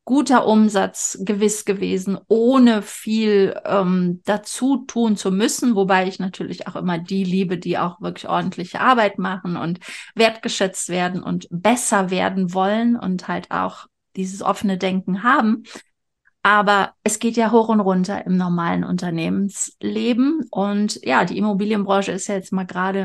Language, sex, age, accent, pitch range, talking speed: German, female, 30-49, German, 190-225 Hz, 150 wpm